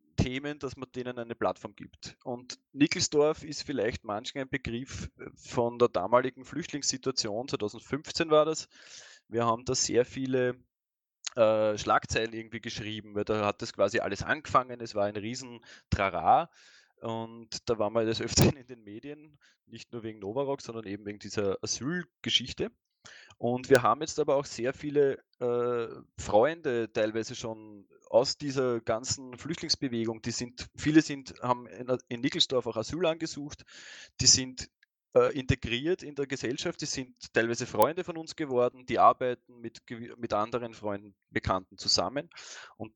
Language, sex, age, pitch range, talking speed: German, male, 20-39, 110-135 Hz, 150 wpm